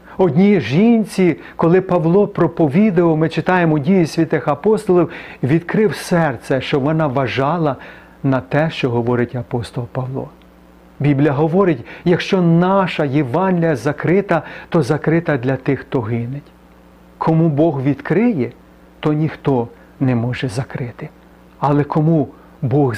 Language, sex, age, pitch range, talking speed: Ukrainian, male, 40-59, 130-165 Hz, 115 wpm